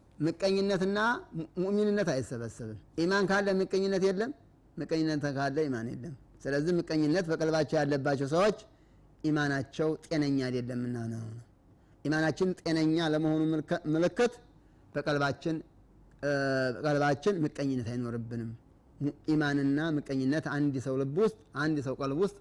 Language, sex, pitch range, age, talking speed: Amharic, male, 130-175 Hz, 30-49, 95 wpm